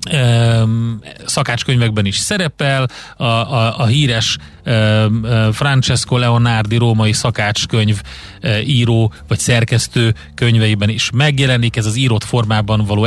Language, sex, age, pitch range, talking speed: Hungarian, male, 30-49, 110-130 Hz, 100 wpm